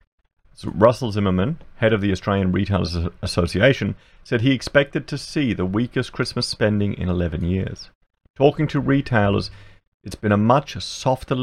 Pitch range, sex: 90-120 Hz, male